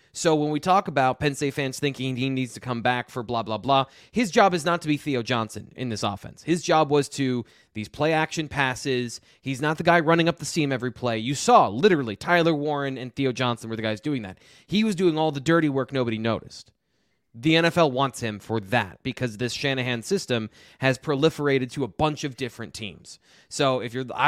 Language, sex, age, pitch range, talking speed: English, male, 20-39, 120-150 Hz, 220 wpm